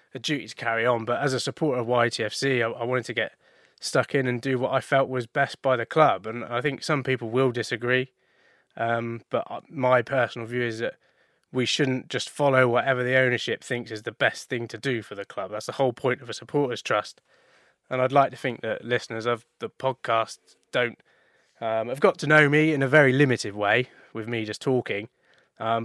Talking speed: 220 wpm